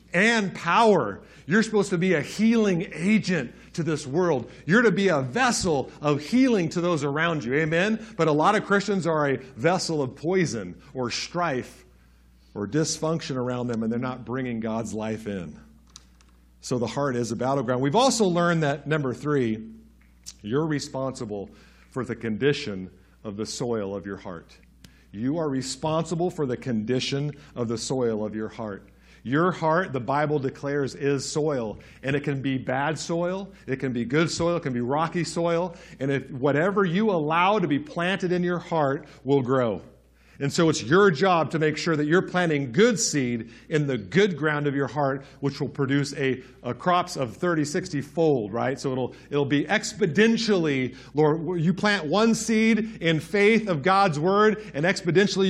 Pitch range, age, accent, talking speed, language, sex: 130-180 Hz, 50-69, American, 180 wpm, English, male